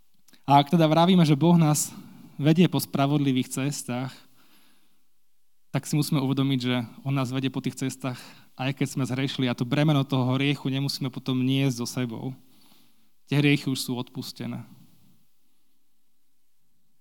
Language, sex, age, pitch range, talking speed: Slovak, male, 20-39, 130-155 Hz, 145 wpm